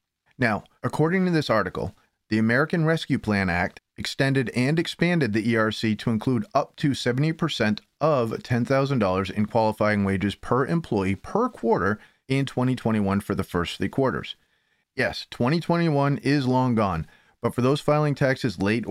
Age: 30-49